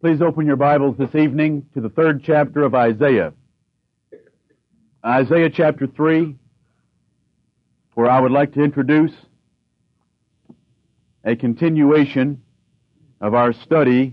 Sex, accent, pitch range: male, American, 130-160 Hz